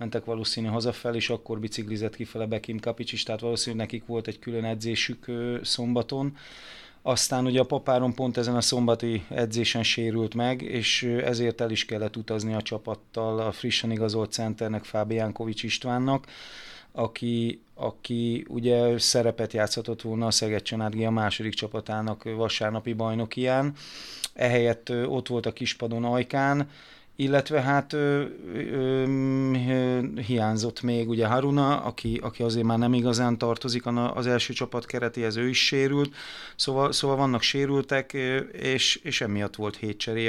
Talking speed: 140 wpm